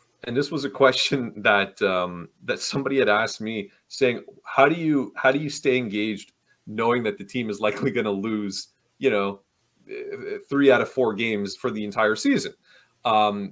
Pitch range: 105-135 Hz